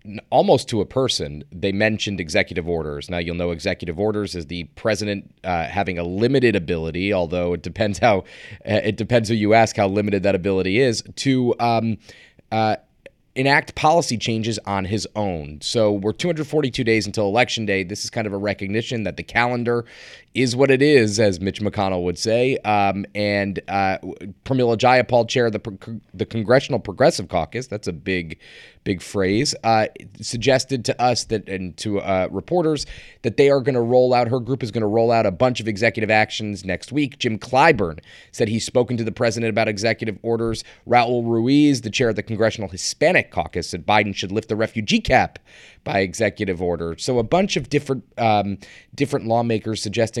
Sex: male